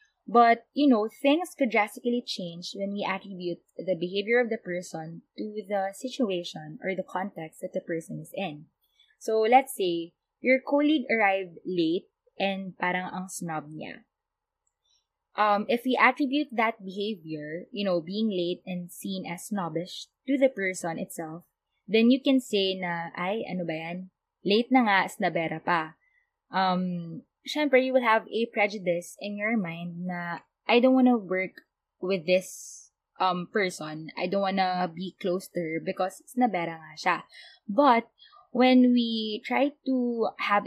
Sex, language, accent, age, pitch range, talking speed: female, Filipino, native, 20-39, 180-250 Hz, 160 wpm